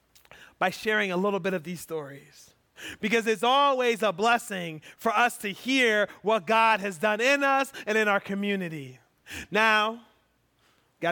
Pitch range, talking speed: 195-245 Hz, 155 wpm